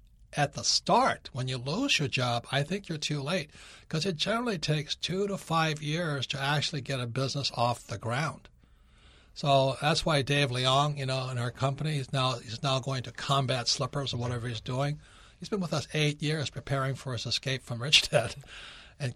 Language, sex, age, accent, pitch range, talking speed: English, male, 60-79, American, 130-155 Hz, 205 wpm